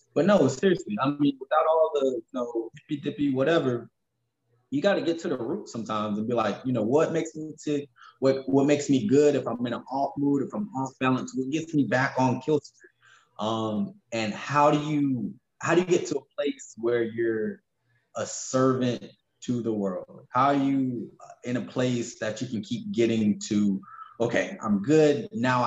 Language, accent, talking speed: English, American, 200 wpm